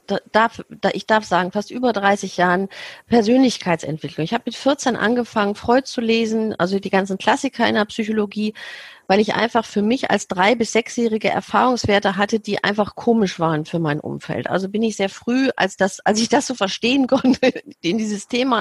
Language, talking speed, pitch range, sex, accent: German, 180 wpm, 180-230 Hz, female, German